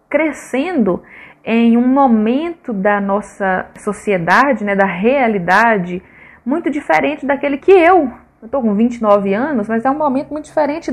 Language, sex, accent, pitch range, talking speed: Portuguese, female, Brazilian, 205-290 Hz, 145 wpm